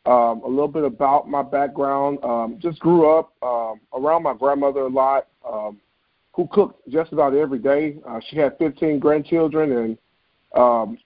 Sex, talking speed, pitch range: male, 170 wpm, 130-160 Hz